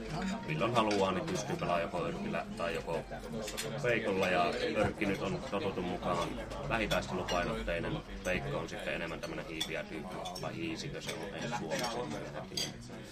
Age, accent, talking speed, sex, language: 30-49, native, 140 wpm, male, Finnish